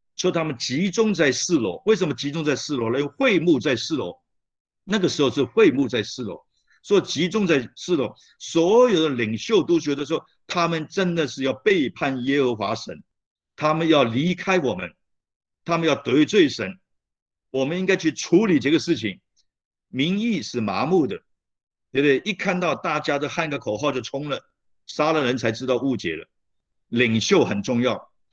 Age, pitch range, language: 50-69, 125-170 Hz, Chinese